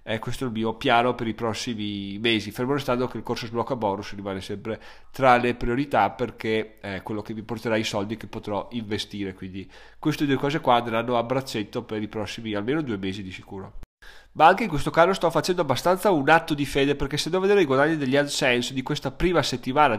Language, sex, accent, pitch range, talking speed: Italian, male, native, 110-135 Hz, 220 wpm